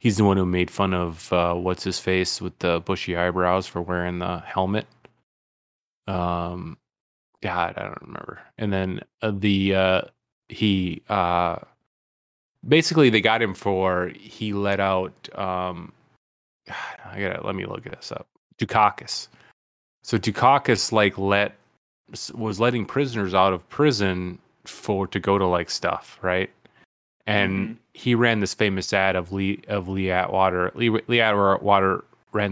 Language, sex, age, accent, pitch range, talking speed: English, male, 20-39, American, 90-105 Hz, 150 wpm